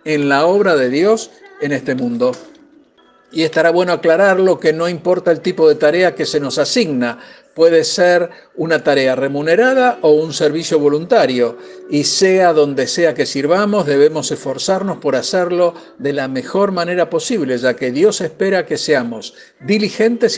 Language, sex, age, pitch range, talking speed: Spanish, male, 60-79, 150-200 Hz, 160 wpm